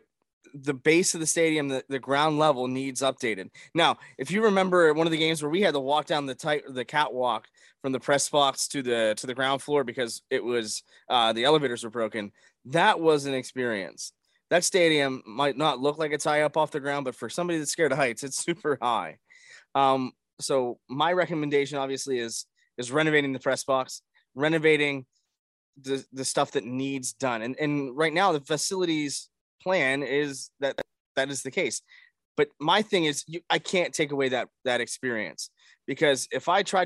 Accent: American